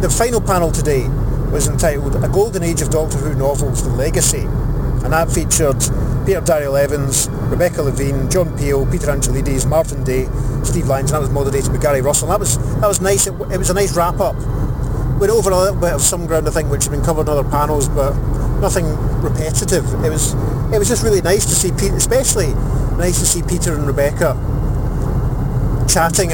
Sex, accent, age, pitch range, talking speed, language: male, British, 30-49, 130-150 Hz, 200 wpm, English